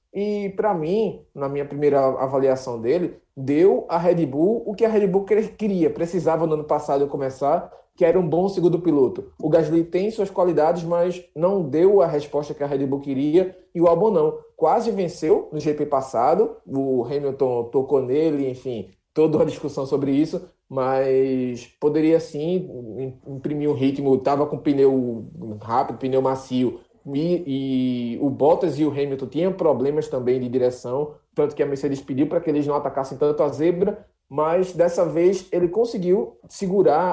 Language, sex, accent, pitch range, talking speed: Portuguese, male, Brazilian, 135-180 Hz, 170 wpm